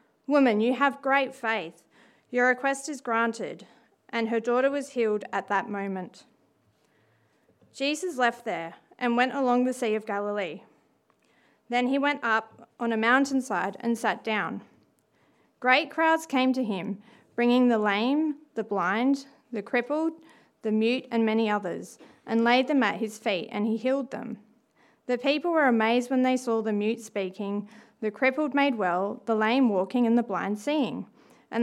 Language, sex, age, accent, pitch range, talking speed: English, female, 30-49, Australian, 215-270 Hz, 165 wpm